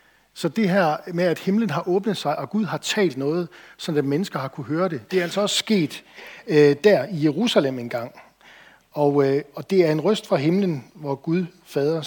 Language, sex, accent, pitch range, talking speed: Danish, male, native, 135-180 Hz, 220 wpm